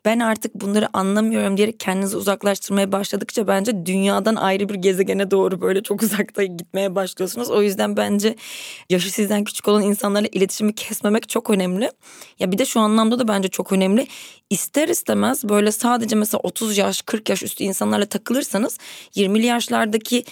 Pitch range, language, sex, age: 195-225 Hz, Turkish, female, 20-39